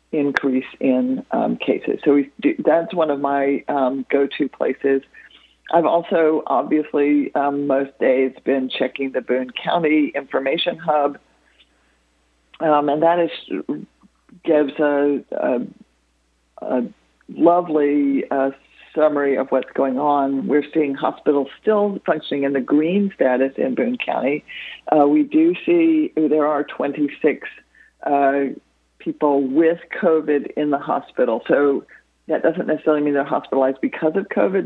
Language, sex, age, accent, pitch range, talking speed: English, female, 50-69, American, 130-155 Hz, 135 wpm